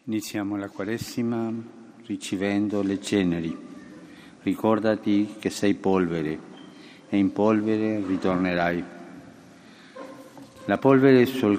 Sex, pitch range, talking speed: male, 100-125 Hz, 90 wpm